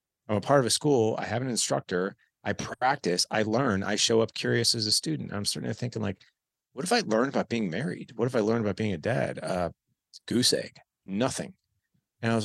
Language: English